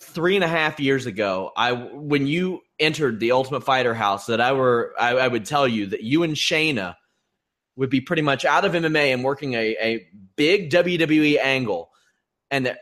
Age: 30-49